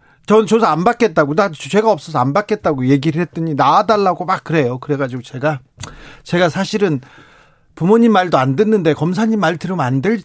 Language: Korean